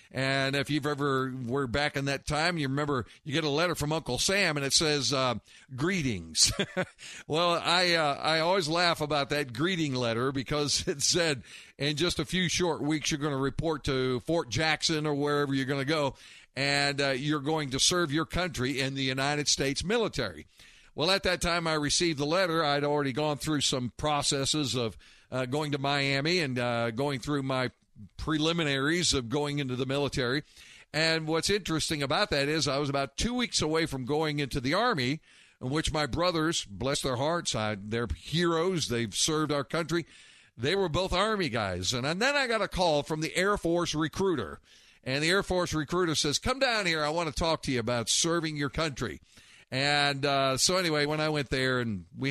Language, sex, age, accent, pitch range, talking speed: English, male, 50-69, American, 135-160 Hz, 200 wpm